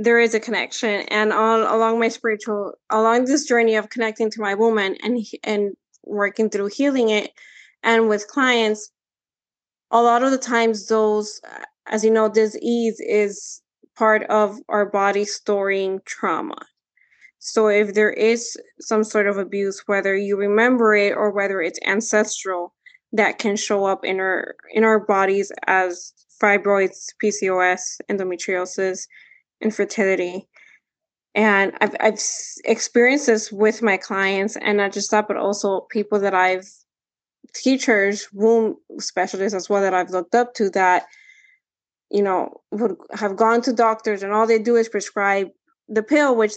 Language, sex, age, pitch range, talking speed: English, female, 20-39, 200-225 Hz, 150 wpm